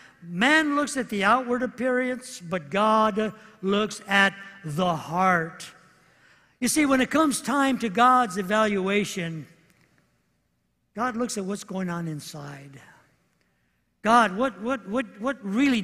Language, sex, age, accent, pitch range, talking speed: English, male, 60-79, American, 200-255 Hz, 130 wpm